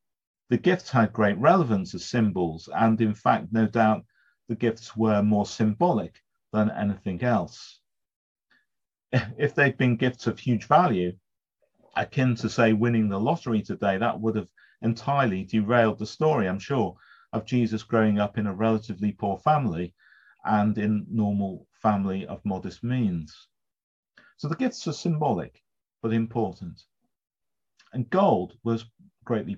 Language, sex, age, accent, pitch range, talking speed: English, male, 40-59, British, 105-125 Hz, 140 wpm